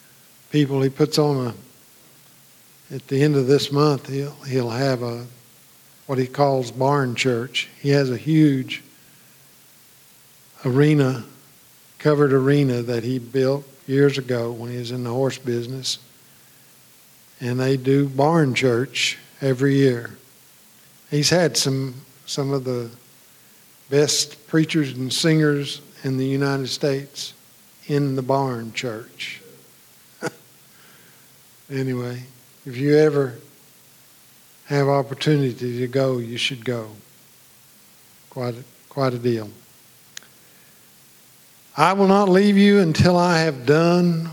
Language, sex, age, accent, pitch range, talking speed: English, male, 50-69, American, 125-145 Hz, 120 wpm